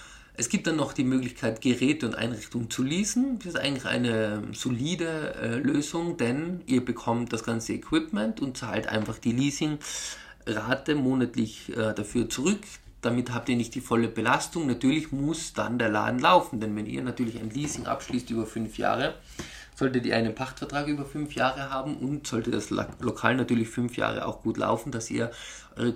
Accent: German